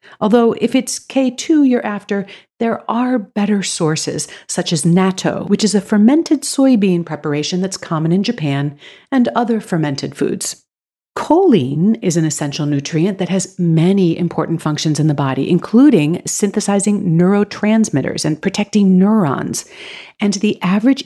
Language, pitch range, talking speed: English, 165-225 Hz, 140 wpm